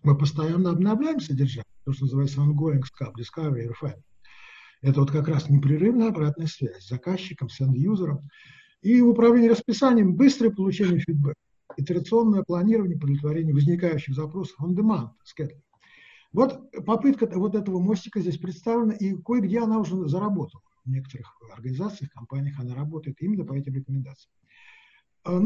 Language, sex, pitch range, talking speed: Russian, male, 145-215 Hz, 130 wpm